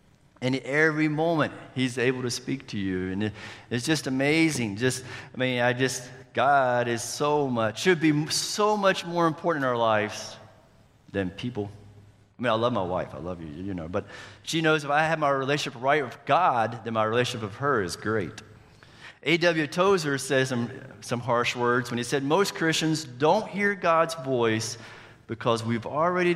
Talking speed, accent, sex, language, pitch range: 185 wpm, American, male, English, 115-145 Hz